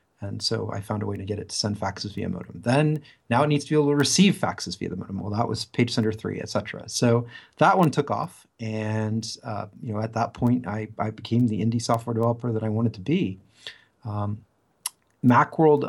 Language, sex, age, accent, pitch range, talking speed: English, male, 40-59, American, 105-120 Hz, 230 wpm